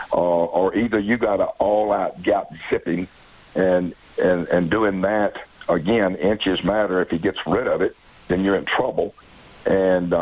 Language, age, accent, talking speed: English, 60-79, American, 165 wpm